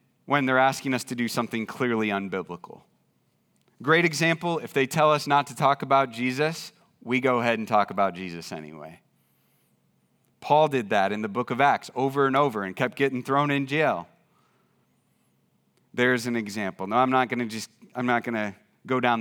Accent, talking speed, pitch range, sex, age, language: American, 170 wpm, 120-155 Hz, male, 30-49, English